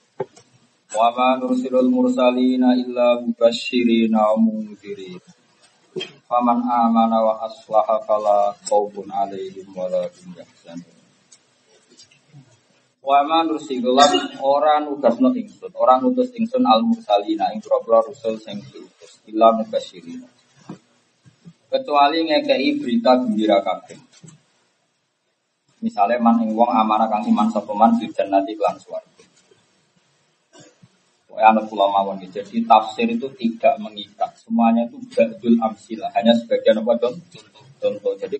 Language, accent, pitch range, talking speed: Indonesian, native, 110-175 Hz, 95 wpm